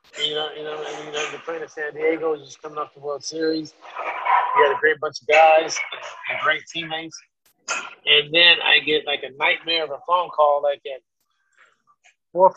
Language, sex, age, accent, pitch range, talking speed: English, male, 30-49, American, 155-235 Hz, 205 wpm